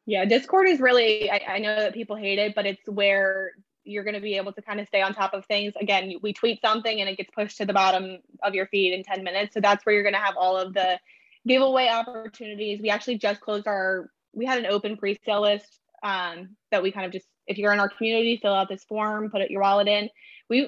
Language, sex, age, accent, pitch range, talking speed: English, female, 10-29, American, 190-225 Hz, 250 wpm